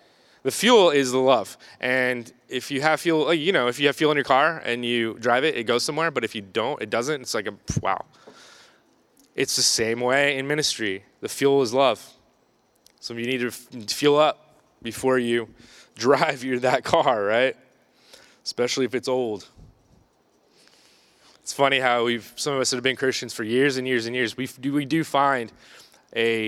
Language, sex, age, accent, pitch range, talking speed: English, male, 20-39, American, 120-155 Hz, 195 wpm